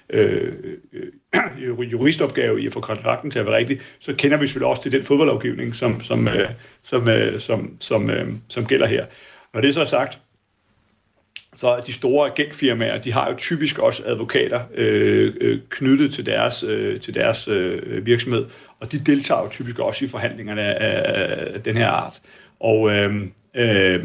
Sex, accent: male, native